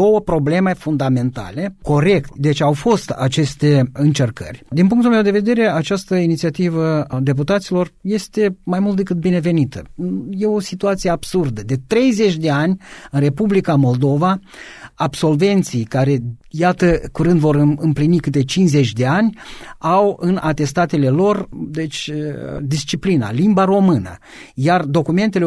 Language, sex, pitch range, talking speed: Romanian, male, 140-185 Hz, 125 wpm